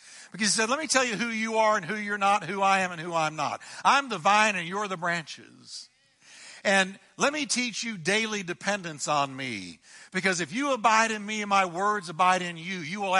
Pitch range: 170-220 Hz